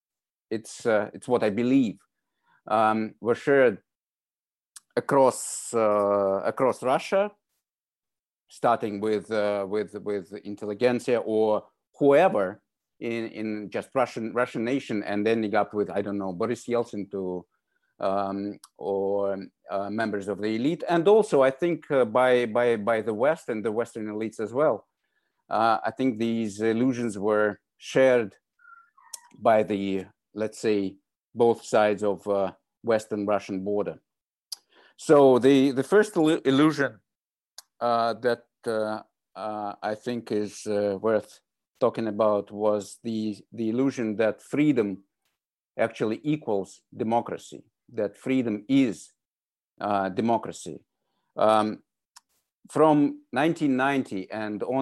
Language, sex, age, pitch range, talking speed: English, male, 50-69, 105-125 Hz, 120 wpm